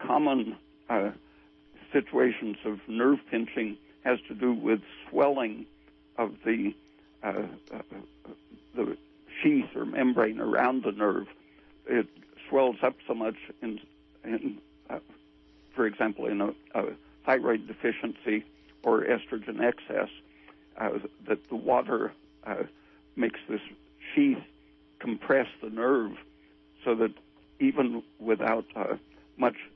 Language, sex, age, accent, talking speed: English, male, 60-79, American, 115 wpm